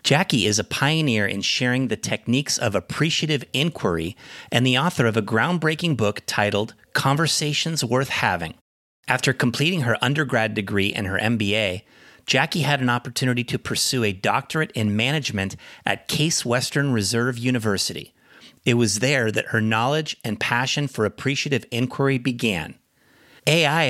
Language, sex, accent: English, male, American